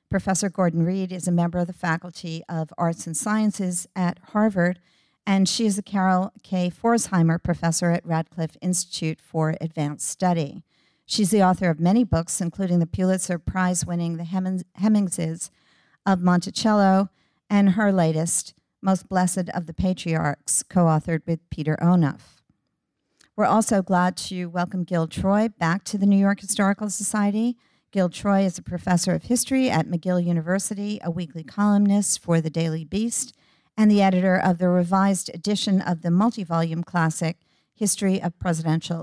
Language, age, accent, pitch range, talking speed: English, 50-69, American, 170-195 Hz, 155 wpm